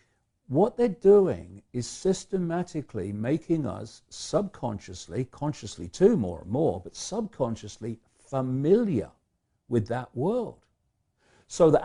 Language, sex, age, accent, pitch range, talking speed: English, male, 60-79, British, 105-135 Hz, 105 wpm